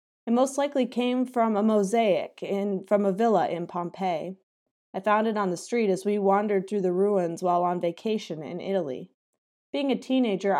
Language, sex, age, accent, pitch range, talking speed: English, female, 20-39, American, 185-220 Hz, 185 wpm